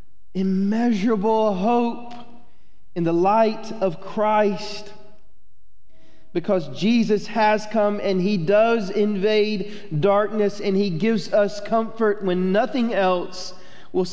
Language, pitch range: English, 140-215 Hz